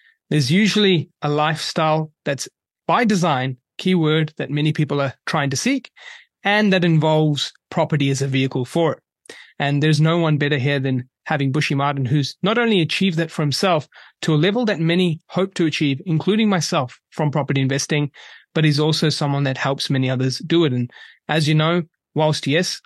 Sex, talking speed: male, 185 wpm